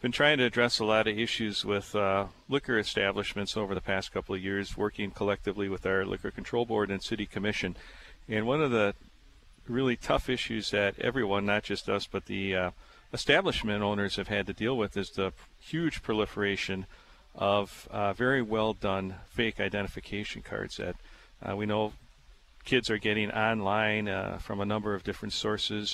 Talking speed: 175 wpm